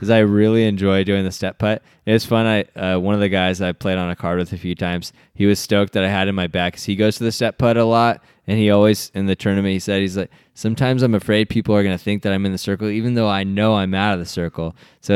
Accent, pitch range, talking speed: American, 95-110 Hz, 305 wpm